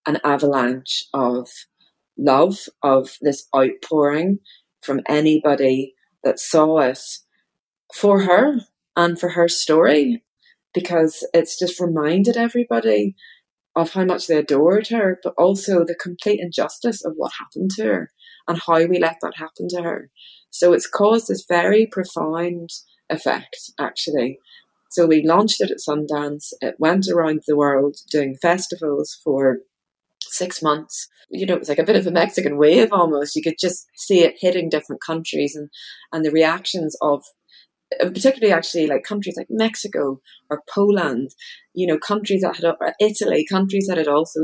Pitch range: 145-180 Hz